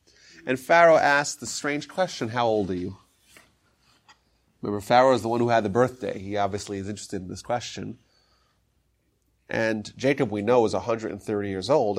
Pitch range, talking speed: 105-145 Hz, 170 wpm